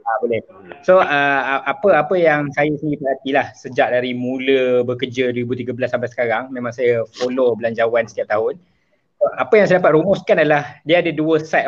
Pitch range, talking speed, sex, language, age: 130-180 Hz, 175 wpm, male, Malay, 20-39